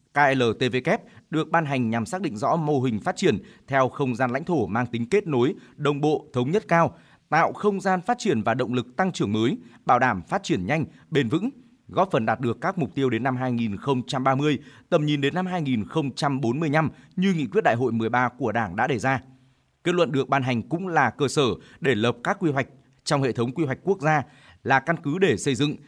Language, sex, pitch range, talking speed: Vietnamese, male, 130-165 Hz, 225 wpm